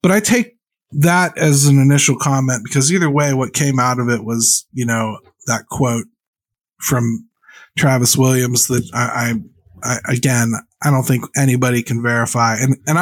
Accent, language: American, English